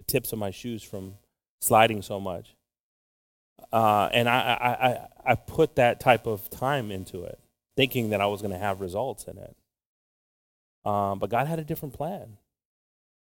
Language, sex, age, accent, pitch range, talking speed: English, male, 30-49, American, 100-120 Hz, 170 wpm